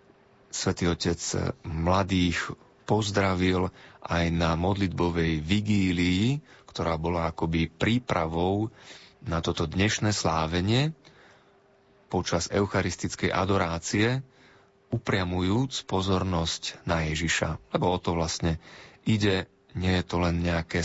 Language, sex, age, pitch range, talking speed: Slovak, male, 30-49, 85-100 Hz, 95 wpm